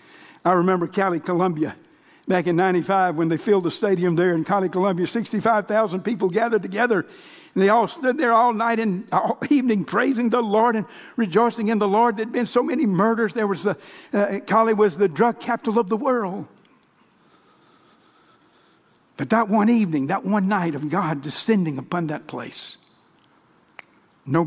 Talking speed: 170 wpm